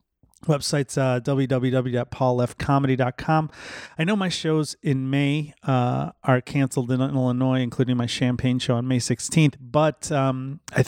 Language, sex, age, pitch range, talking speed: English, male, 30-49, 125-145 Hz, 140 wpm